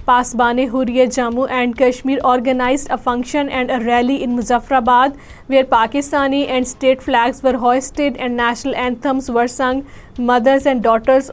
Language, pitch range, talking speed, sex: Urdu, 245-265 Hz, 150 wpm, female